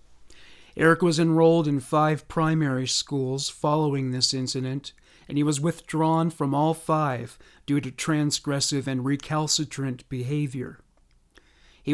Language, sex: English, male